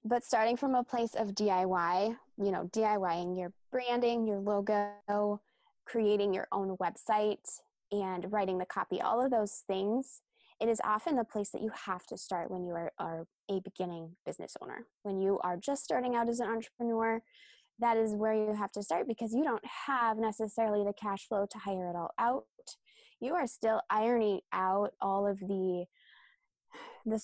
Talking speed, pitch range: 180 wpm, 195-240 Hz